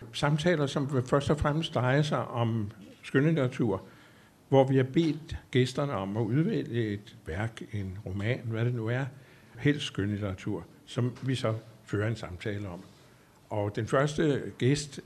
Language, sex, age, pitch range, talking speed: Danish, male, 60-79, 110-135 Hz, 150 wpm